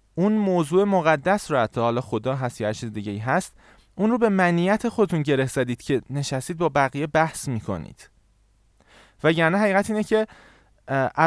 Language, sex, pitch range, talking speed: Persian, male, 120-190 Hz, 160 wpm